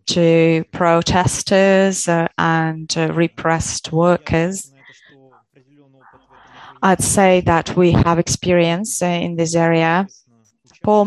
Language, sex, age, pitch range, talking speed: English, female, 20-39, 160-180 Hz, 100 wpm